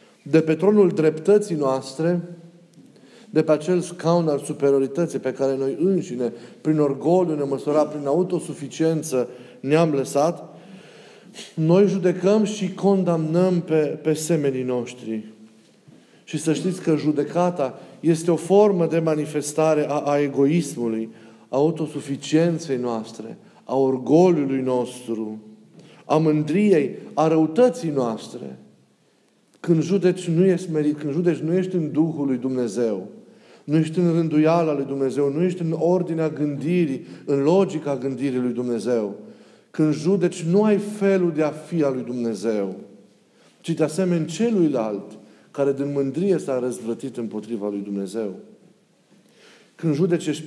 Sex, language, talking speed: male, Romanian, 130 wpm